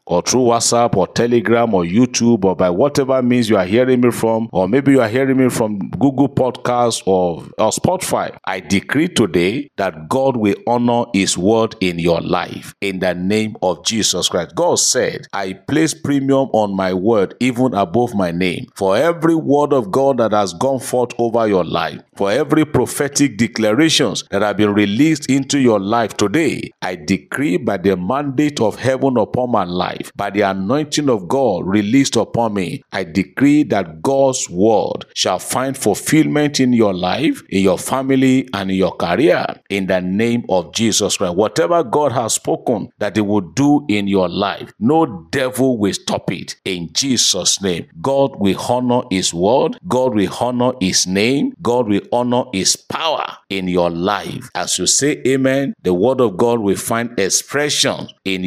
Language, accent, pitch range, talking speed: English, Nigerian, 95-130 Hz, 180 wpm